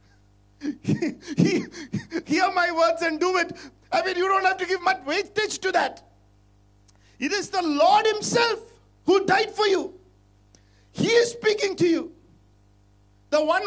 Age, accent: 50-69, Indian